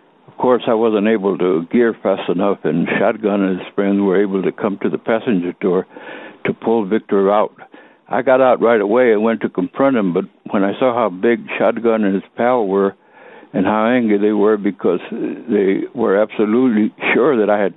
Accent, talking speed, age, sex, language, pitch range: American, 205 wpm, 60-79, male, English, 100-115 Hz